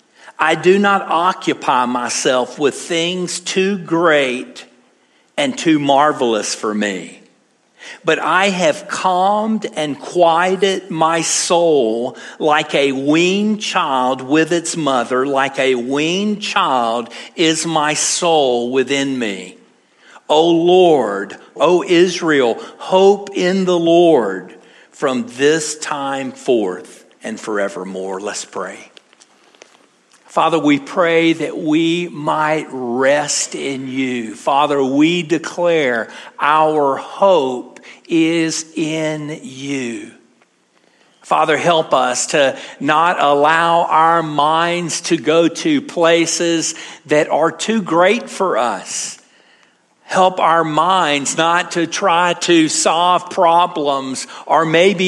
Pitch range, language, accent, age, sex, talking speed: 145-185 Hz, English, American, 50-69, male, 110 wpm